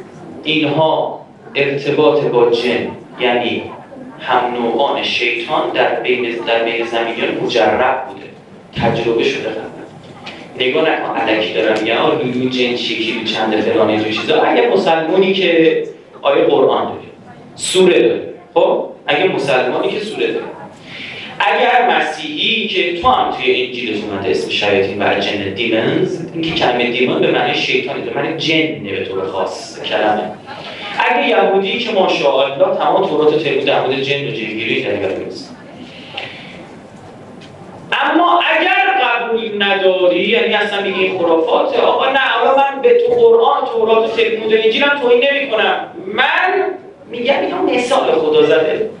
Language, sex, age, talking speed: Persian, male, 30-49, 145 wpm